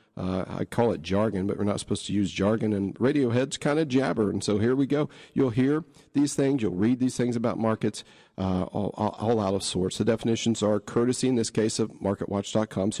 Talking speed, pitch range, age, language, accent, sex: 225 wpm, 100-125 Hz, 40-59, English, American, male